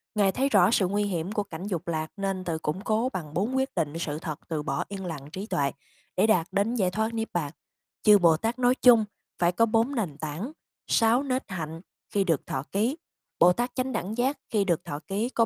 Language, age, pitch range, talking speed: Vietnamese, 20-39, 170-225 Hz, 235 wpm